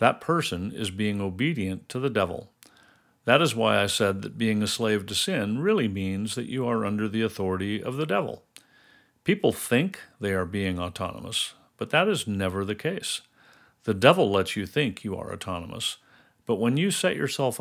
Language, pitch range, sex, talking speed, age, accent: English, 100-120 Hz, male, 185 wpm, 50-69, American